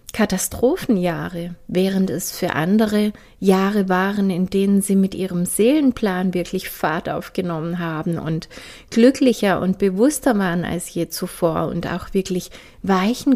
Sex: female